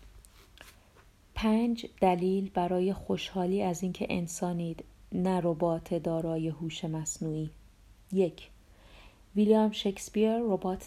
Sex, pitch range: female, 165-190 Hz